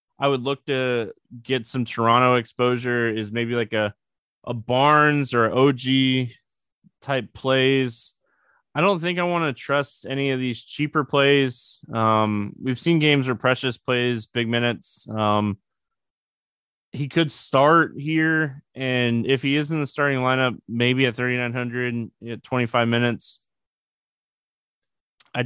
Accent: American